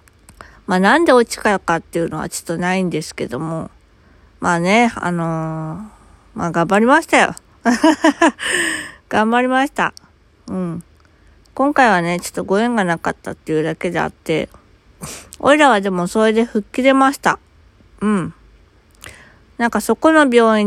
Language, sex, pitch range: Japanese, female, 165-230 Hz